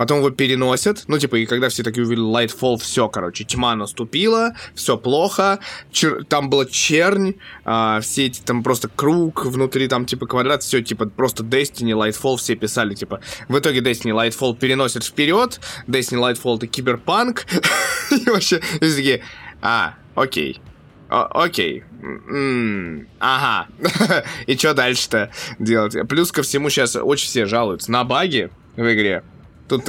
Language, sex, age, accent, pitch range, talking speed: Russian, male, 20-39, native, 115-135 Hz, 145 wpm